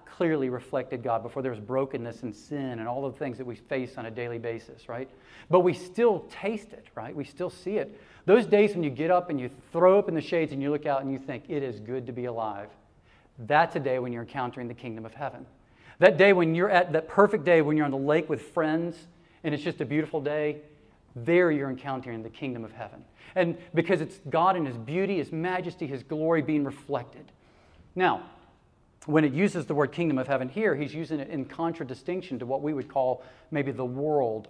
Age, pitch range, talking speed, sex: 40-59, 130-165 Hz, 230 wpm, male